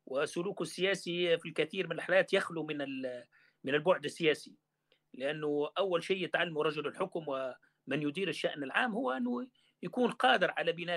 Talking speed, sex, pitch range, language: 150 wpm, male, 170-215 Hz, Arabic